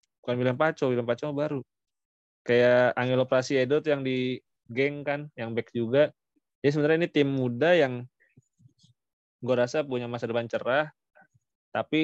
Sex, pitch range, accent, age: male, 115-145 Hz, native, 20-39